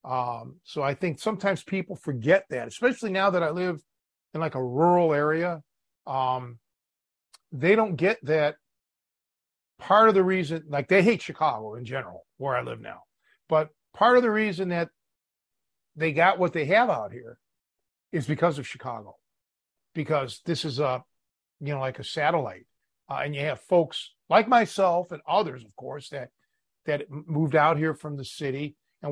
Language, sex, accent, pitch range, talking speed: English, male, American, 135-180 Hz, 170 wpm